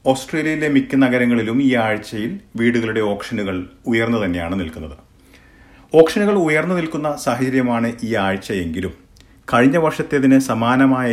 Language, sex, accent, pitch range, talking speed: Malayalam, male, native, 100-130 Hz, 100 wpm